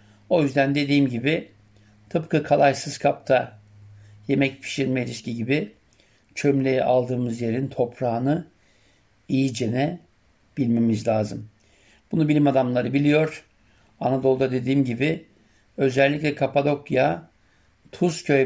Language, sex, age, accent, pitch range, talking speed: German, male, 60-79, Turkish, 115-145 Hz, 90 wpm